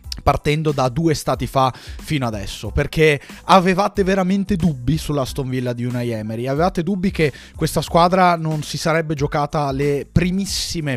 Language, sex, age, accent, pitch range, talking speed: Italian, male, 30-49, native, 125-160 Hz, 150 wpm